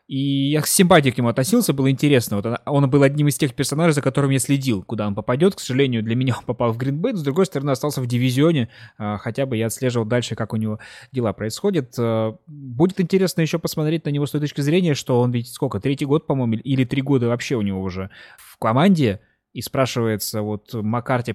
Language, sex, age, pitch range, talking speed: Russian, male, 20-39, 115-145 Hz, 220 wpm